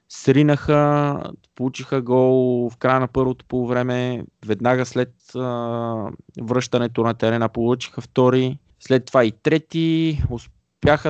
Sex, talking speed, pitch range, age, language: male, 120 wpm, 105-130 Hz, 20-39, Bulgarian